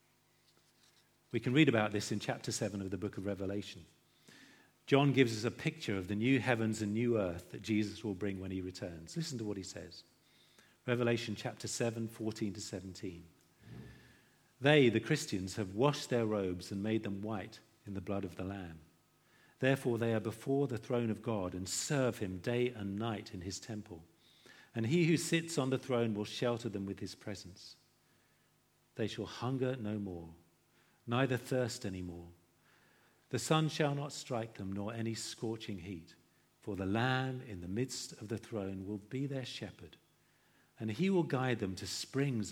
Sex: male